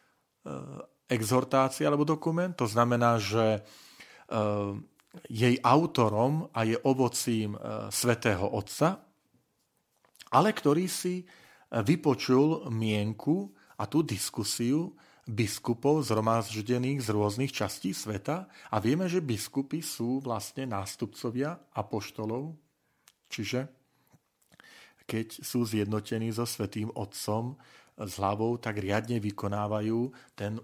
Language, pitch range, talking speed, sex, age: Slovak, 105-130 Hz, 90 wpm, male, 40-59